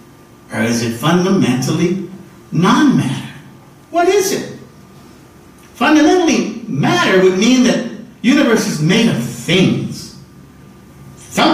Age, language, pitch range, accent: 50-69, English, 140-235 Hz, American